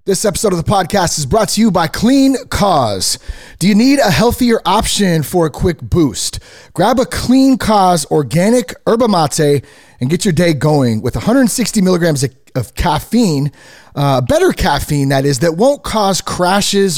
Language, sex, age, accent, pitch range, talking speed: English, male, 30-49, American, 135-195 Hz, 175 wpm